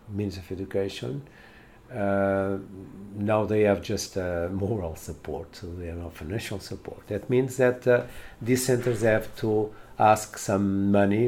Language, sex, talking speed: English, male, 150 wpm